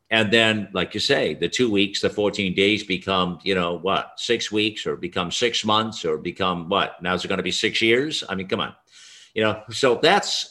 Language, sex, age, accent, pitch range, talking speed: English, male, 50-69, American, 95-140 Hz, 230 wpm